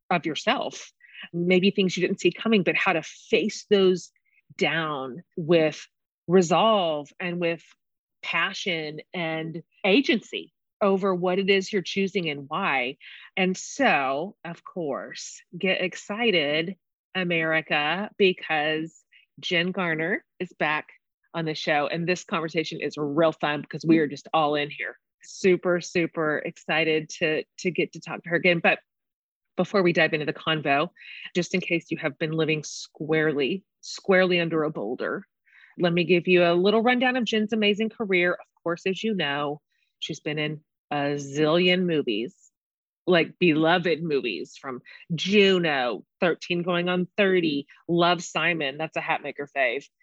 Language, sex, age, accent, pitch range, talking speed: English, female, 30-49, American, 155-185 Hz, 150 wpm